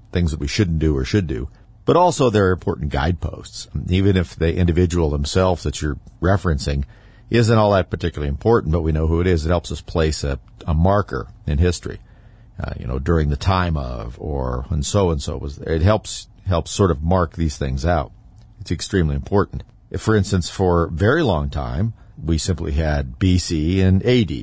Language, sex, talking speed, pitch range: English, male, 195 wpm, 80-105 Hz